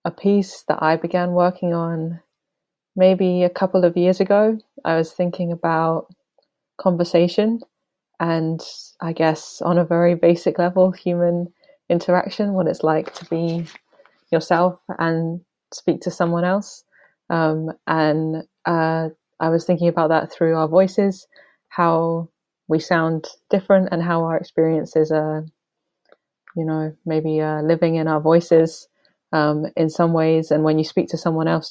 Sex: female